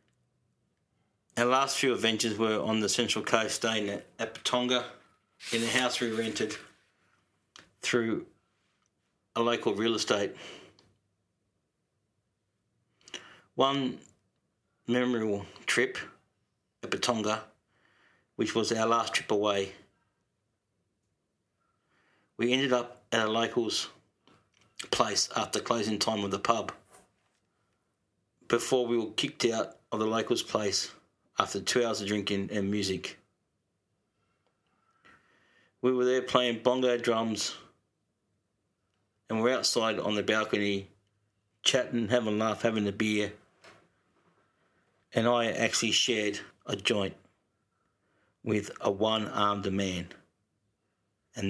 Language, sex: English, male